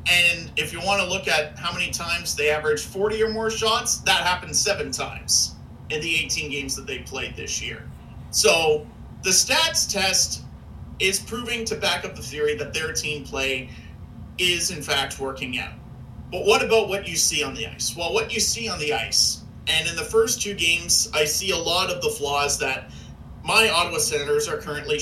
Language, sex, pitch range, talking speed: English, male, 145-200 Hz, 200 wpm